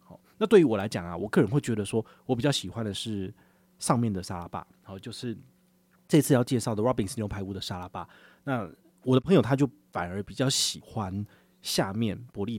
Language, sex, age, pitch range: Chinese, male, 30-49, 105-145 Hz